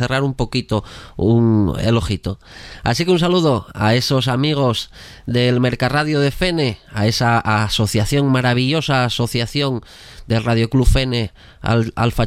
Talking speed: 130 wpm